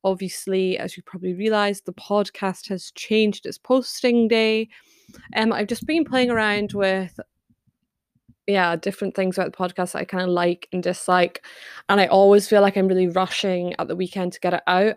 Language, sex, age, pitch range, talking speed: English, female, 20-39, 180-215 Hz, 190 wpm